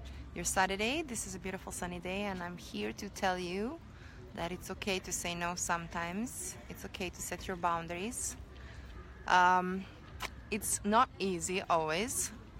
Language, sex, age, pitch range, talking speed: English, female, 20-39, 115-195 Hz, 150 wpm